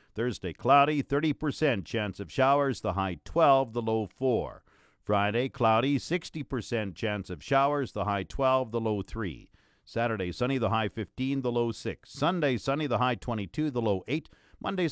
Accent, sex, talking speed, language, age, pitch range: American, male, 165 wpm, English, 50-69, 105-140 Hz